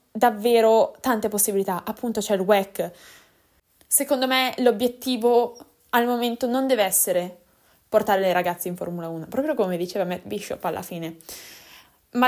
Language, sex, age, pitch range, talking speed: Italian, female, 10-29, 195-245 Hz, 140 wpm